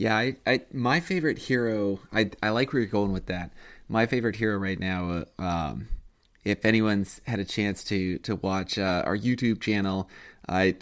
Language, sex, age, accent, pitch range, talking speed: English, male, 20-39, American, 95-110 Hz, 190 wpm